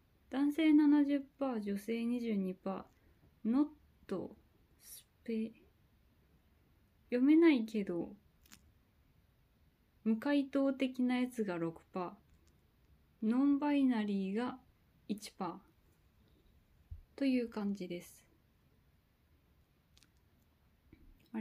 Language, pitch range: Japanese, 180-265 Hz